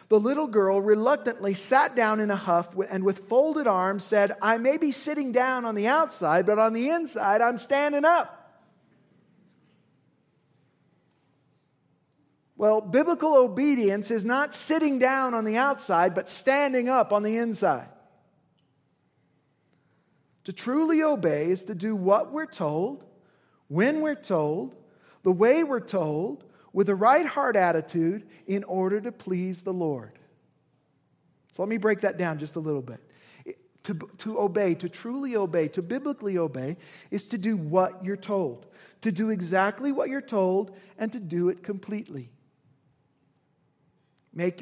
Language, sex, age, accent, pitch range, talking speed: English, male, 40-59, American, 185-250 Hz, 150 wpm